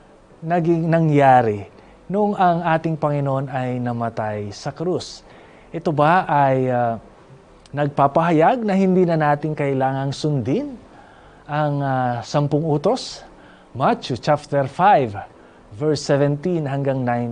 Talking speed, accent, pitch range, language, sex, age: 105 wpm, native, 130-165 Hz, Filipino, male, 20-39